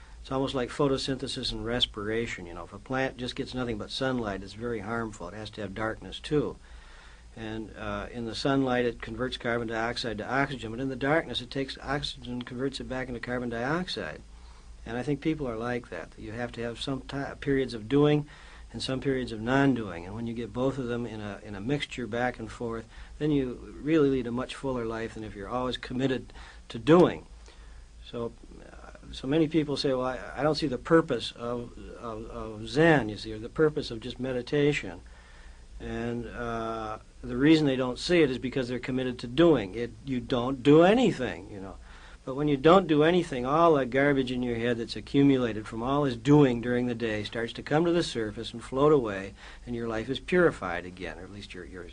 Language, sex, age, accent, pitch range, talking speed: English, male, 60-79, American, 110-135 Hz, 215 wpm